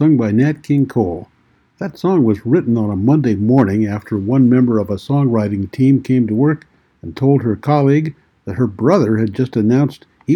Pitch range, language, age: 110-150 Hz, English, 60-79